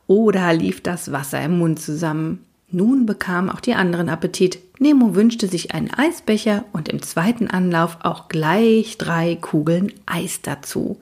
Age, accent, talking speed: 40-59, German, 150 wpm